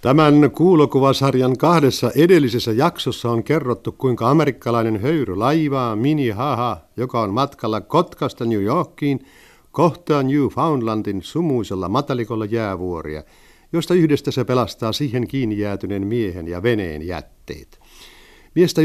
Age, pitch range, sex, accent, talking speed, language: 60-79, 105-140 Hz, male, native, 110 wpm, Finnish